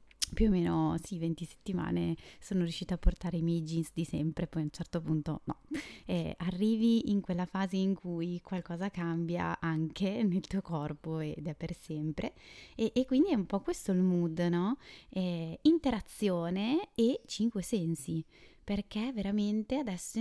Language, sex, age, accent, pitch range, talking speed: Italian, female, 20-39, native, 165-210 Hz, 165 wpm